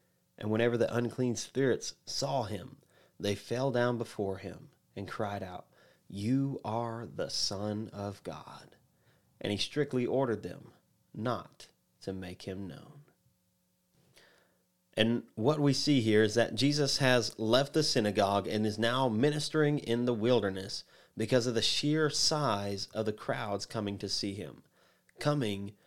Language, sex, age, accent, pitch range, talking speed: English, male, 30-49, American, 105-130 Hz, 145 wpm